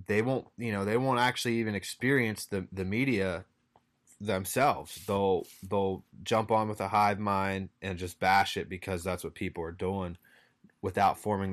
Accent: American